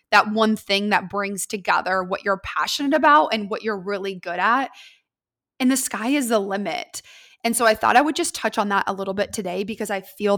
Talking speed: 225 wpm